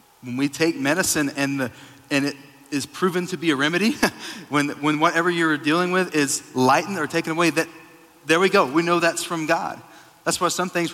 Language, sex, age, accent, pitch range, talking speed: English, male, 40-59, American, 120-165 Hz, 210 wpm